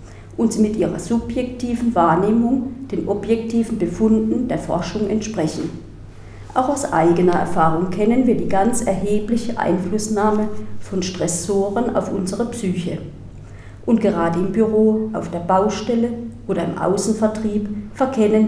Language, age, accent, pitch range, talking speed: German, 40-59, German, 180-225 Hz, 125 wpm